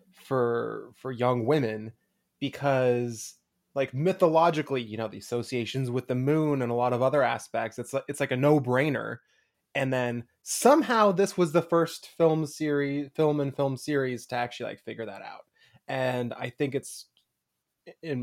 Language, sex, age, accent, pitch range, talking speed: English, male, 20-39, American, 120-140 Hz, 165 wpm